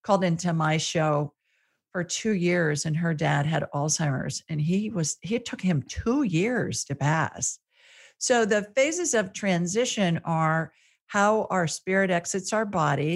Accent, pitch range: American, 150-185 Hz